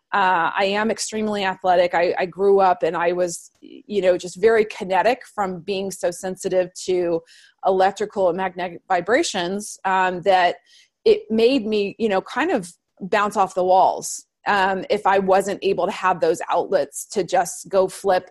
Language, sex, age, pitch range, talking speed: English, female, 30-49, 185-225 Hz, 170 wpm